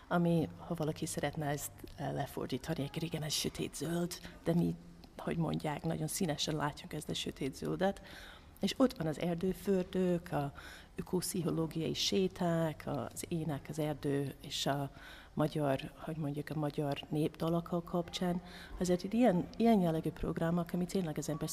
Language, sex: Hungarian, female